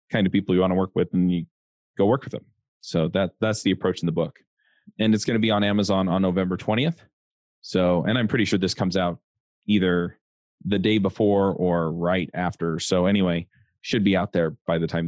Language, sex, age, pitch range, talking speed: English, male, 20-39, 90-105 Hz, 225 wpm